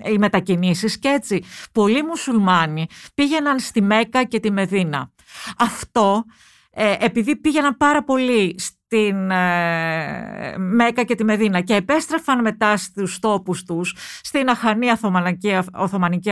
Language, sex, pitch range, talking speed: Greek, female, 185-240 Hz, 115 wpm